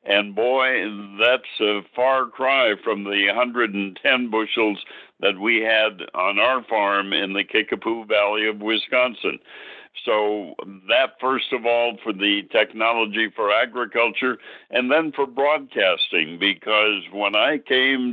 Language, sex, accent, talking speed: English, male, American, 130 wpm